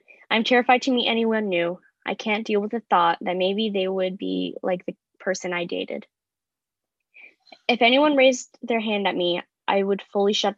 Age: 10-29